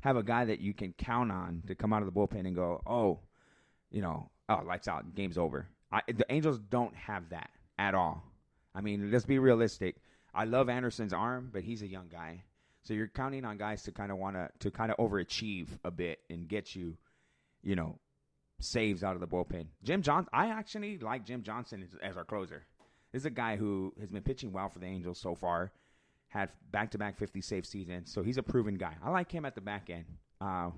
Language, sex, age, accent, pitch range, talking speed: English, male, 30-49, American, 95-115 Hz, 225 wpm